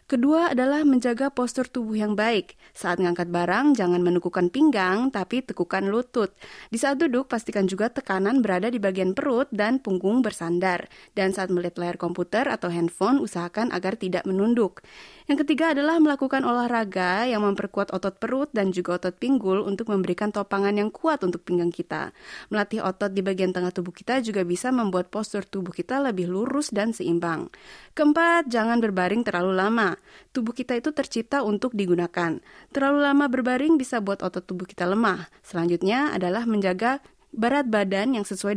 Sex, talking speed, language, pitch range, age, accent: female, 165 wpm, Indonesian, 185-255 Hz, 20-39, native